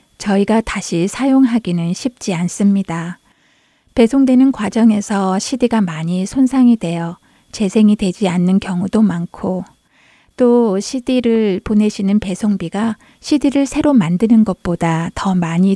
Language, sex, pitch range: Korean, female, 185-235 Hz